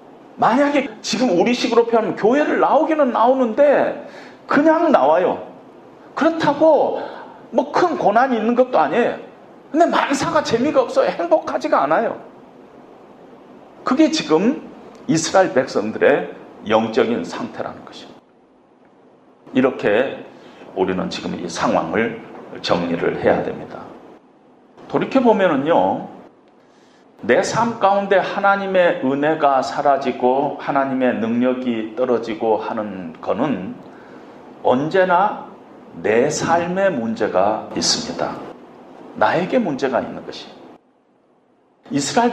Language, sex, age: Korean, male, 40-59